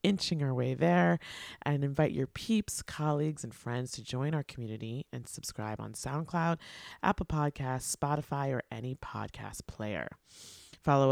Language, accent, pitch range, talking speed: English, American, 120-165 Hz, 145 wpm